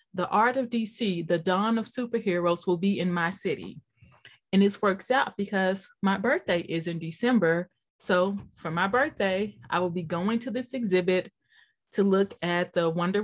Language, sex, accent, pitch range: English, female, American, 180-230 Hz